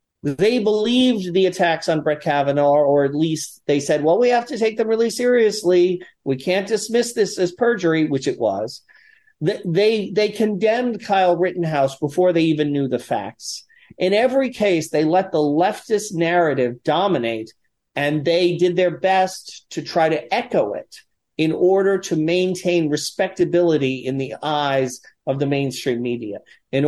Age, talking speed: 40-59, 165 wpm